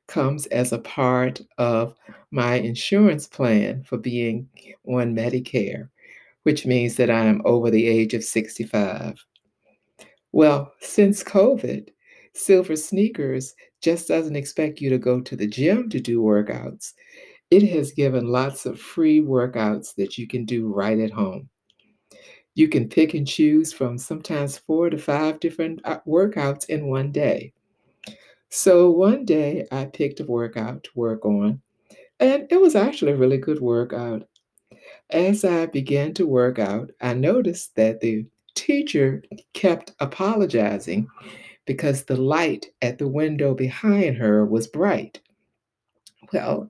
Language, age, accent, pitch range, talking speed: English, 60-79, American, 120-175 Hz, 140 wpm